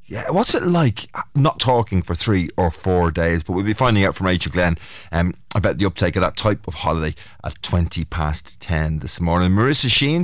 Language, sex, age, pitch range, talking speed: English, male, 30-49, 90-125 Hz, 210 wpm